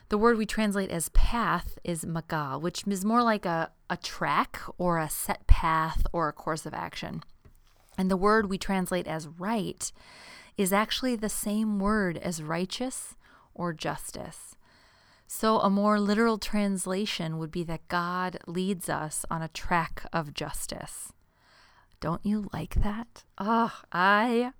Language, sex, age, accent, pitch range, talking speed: English, female, 30-49, American, 165-215 Hz, 150 wpm